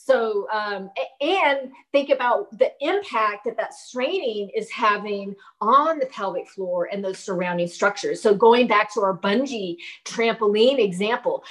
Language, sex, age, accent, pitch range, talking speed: English, female, 30-49, American, 205-280 Hz, 145 wpm